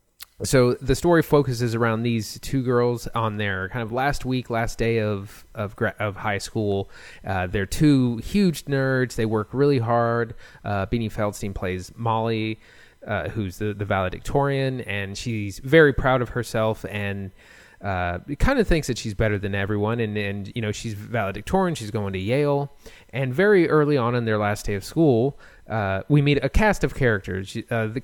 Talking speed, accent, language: 180 wpm, American, English